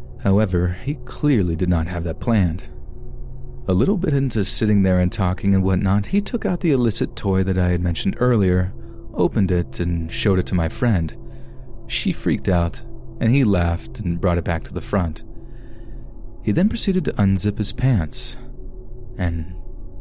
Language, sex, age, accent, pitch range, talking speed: English, male, 30-49, American, 85-115 Hz, 175 wpm